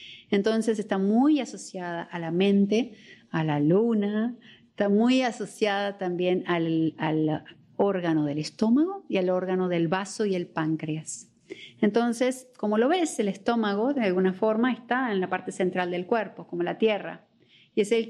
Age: 40-59